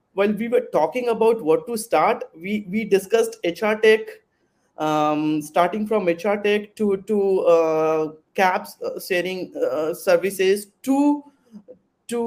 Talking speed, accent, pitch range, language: 130 wpm, Indian, 175-230 Hz, English